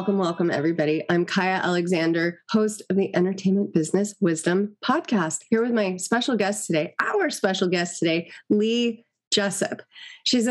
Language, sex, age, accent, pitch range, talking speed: English, female, 30-49, American, 175-215 Hz, 150 wpm